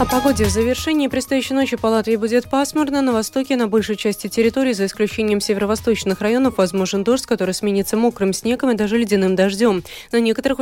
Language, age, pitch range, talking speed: Russian, 20-39, 180-230 Hz, 180 wpm